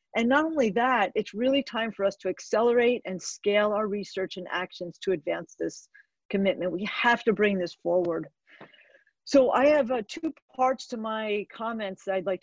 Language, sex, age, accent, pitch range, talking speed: English, female, 40-59, American, 190-240 Hz, 190 wpm